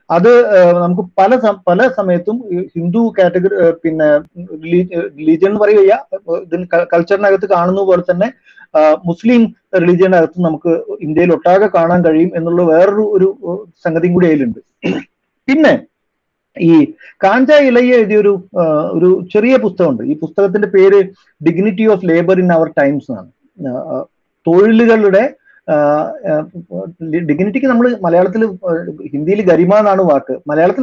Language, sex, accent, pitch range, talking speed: Malayalam, male, native, 170-215 Hz, 105 wpm